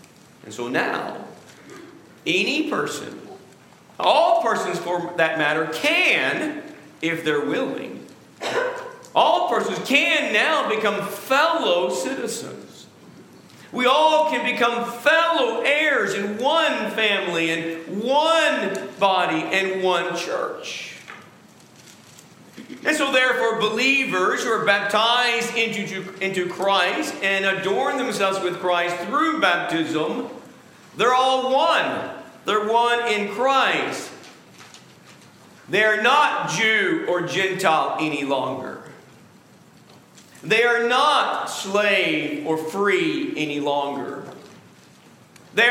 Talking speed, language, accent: 100 wpm, English, American